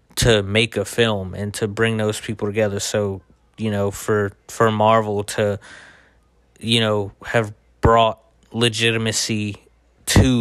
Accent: American